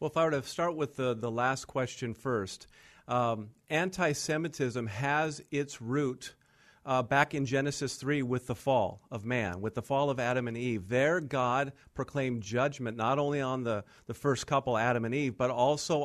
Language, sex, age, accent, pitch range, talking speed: English, male, 50-69, American, 120-150 Hz, 185 wpm